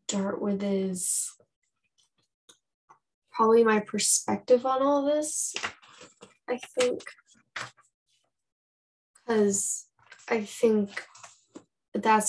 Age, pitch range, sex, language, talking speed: 10-29, 200-250 Hz, female, English, 75 wpm